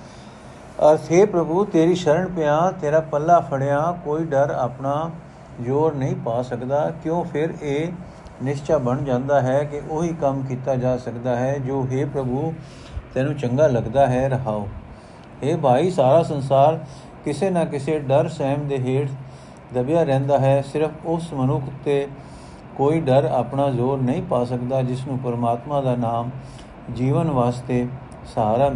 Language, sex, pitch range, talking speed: Punjabi, male, 125-150 Hz, 145 wpm